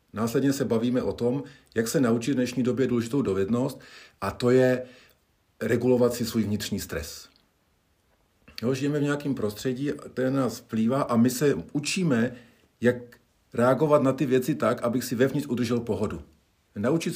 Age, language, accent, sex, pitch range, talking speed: 50-69, Czech, native, male, 110-135 Hz, 155 wpm